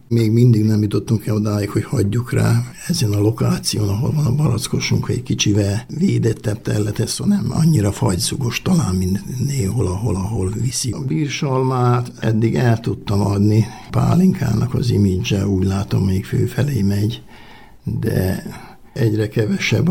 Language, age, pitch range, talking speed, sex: Hungarian, 60-79, 100-120 Hz, 140 wpm, male